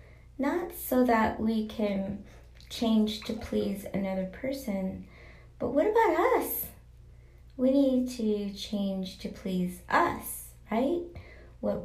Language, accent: English, American